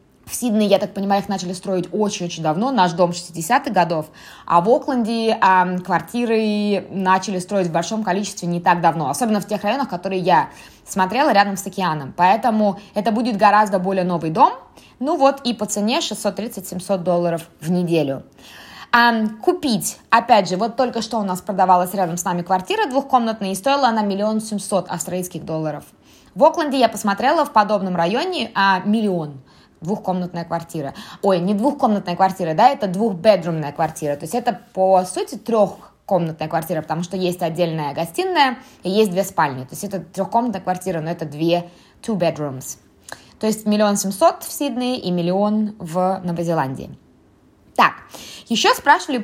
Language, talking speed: Russian, 165 wpm